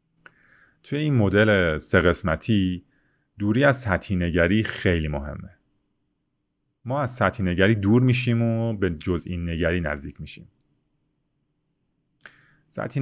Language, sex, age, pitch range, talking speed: Persian, male, 30-49, 90-125 Hz, 110 wpm